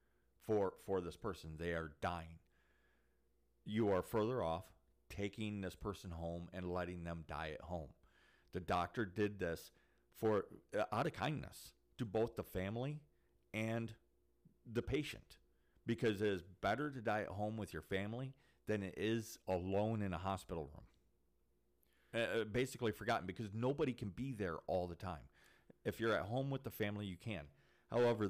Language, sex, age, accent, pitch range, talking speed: English, male, 40-59, American, 85-135 Hz, 165 wpm